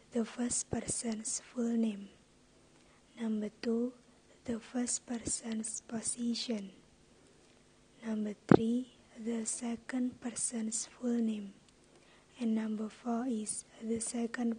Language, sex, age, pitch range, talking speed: English, female, 20-39, 220-240 Hz, 100 wpm